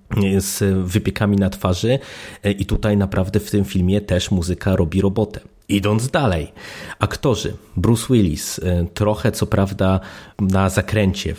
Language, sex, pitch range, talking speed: Polish, male, 95-105 Hz, 125 wpm